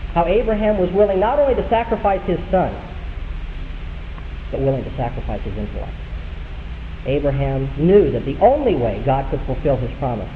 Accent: American